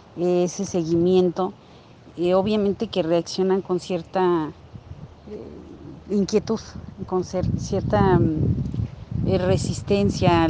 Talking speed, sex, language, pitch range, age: 65 wpm, female, Spanish, 170-190 Hz, 40-59